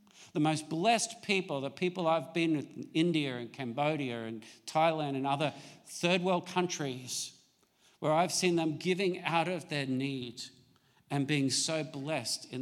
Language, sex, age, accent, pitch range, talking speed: English, male, 50-69, Australian, 145-180 Hz, 160 wpm